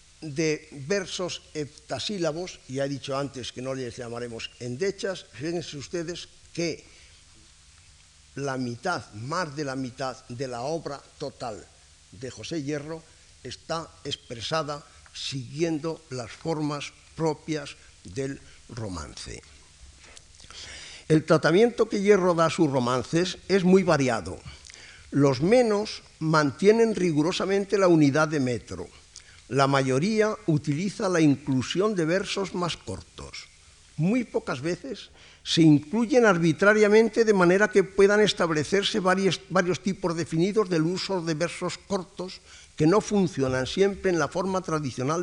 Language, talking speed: Spanish, 120 wpm